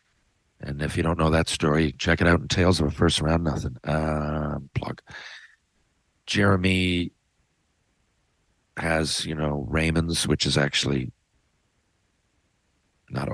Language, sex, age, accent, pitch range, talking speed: English, male, 50-69, American, 80-105 Hz, 125 wpm